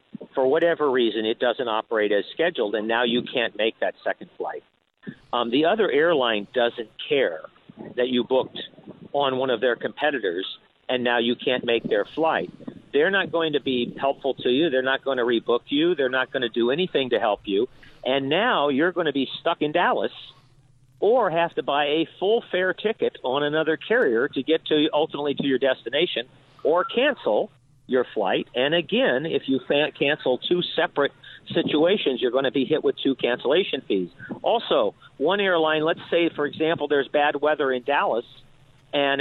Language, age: English, 50-69